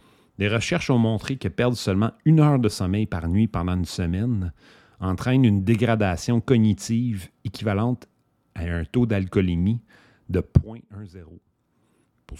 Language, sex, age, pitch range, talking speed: English, male, 40-59, 95-120 Hz, 135 wpm